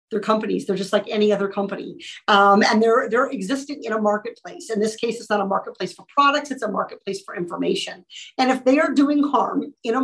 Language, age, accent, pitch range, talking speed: English, 50-69, American, 205-265 Hz, 225 wpm